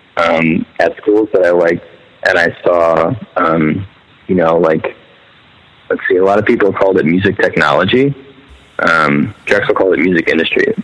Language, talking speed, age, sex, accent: English, 160 wpm, 20-39, male, American